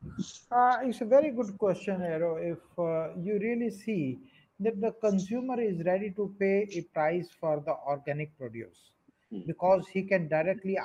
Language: English